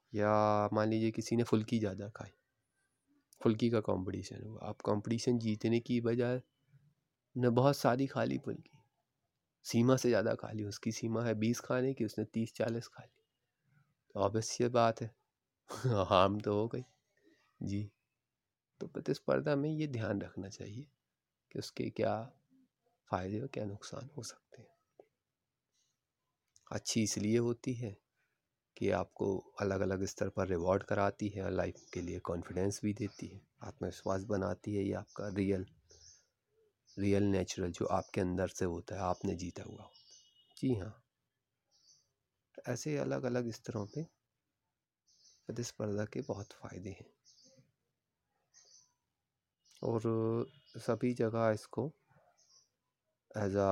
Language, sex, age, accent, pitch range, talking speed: Hindi, male, 30-49, native, 100-125 Hz, 135 wpm